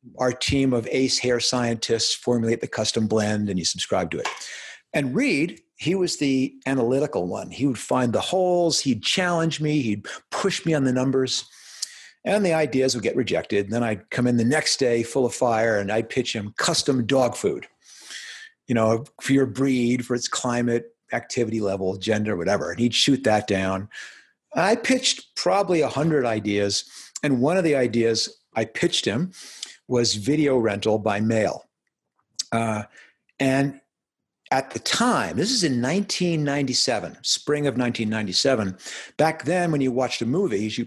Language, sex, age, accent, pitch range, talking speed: English, male, 50-69, American, 110-140 Hz, 170 wpm